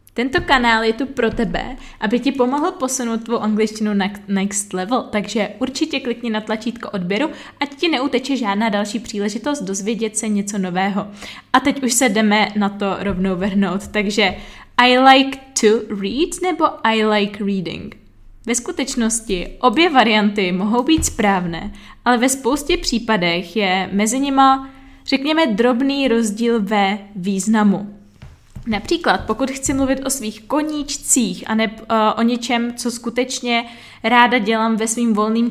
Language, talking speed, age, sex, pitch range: Czech, 145 wpm, 20-39, female, 210-260 Hz